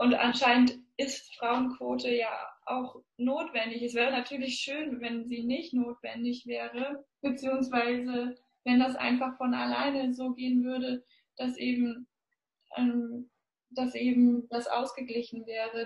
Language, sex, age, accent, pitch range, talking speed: German, female, 10-29, German, 235-255 Hz, 115 wpm